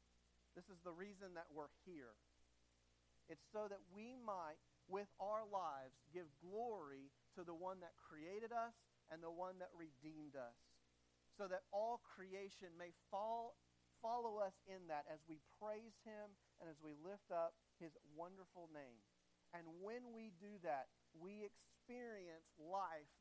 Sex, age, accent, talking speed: male, 40-59, American, 150 wpm